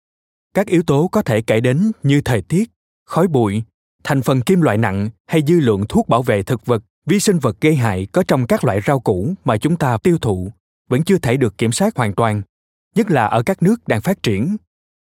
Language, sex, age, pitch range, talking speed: Vietnamese, male, 20-39, 105-155 Hz, 225 wpm